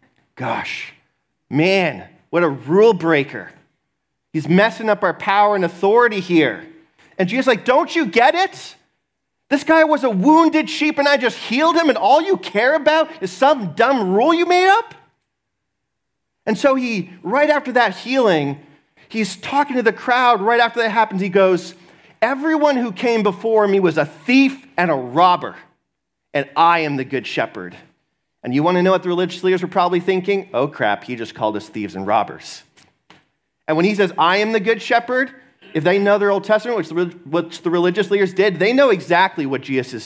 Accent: American